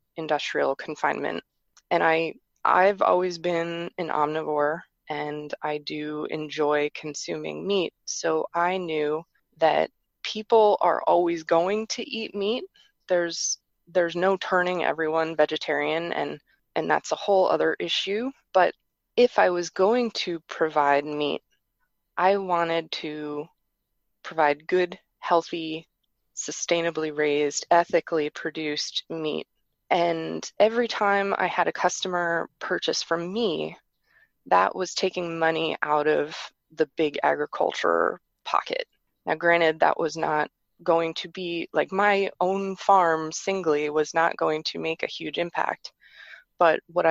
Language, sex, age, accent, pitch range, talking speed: English, female, 20-39, American, 155-185 Hz, 130 wpm